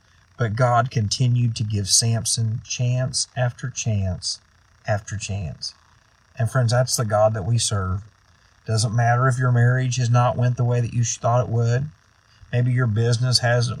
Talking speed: 165 wpm